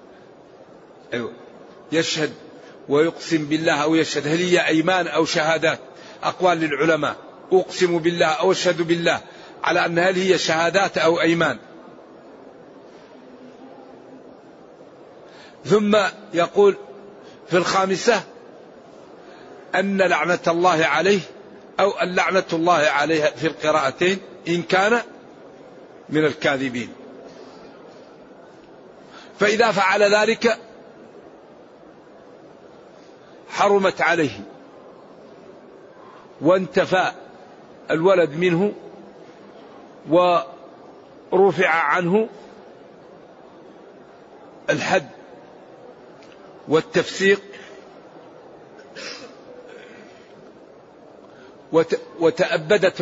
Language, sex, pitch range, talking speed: Arabic, male, 160-195 Hz, 65 wpm